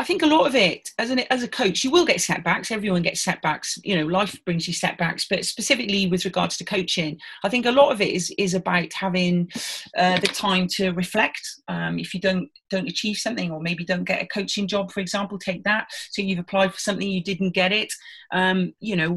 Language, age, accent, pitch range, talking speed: English, 30-49, British, 175-200 Hz, 235 wpm